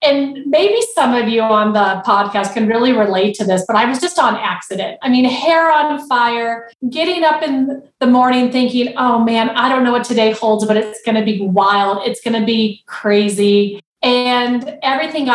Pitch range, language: 215-270 Hz, English